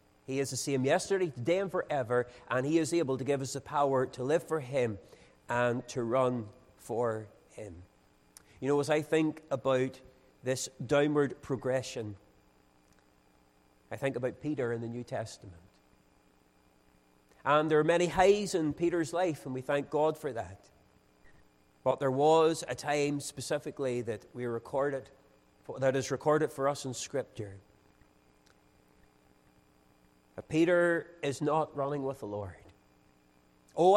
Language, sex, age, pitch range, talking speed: English, male, 40-59, 105-155 Hz, 145 wpm